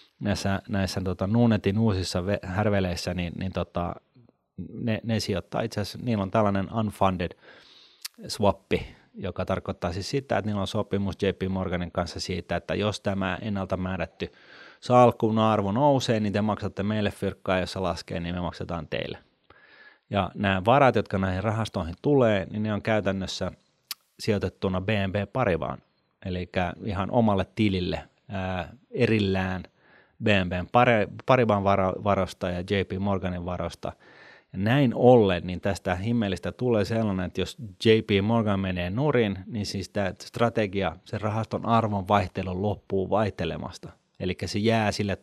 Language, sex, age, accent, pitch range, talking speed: Finnish, male, 30-49, native, 95-110 Hz, 140 wpm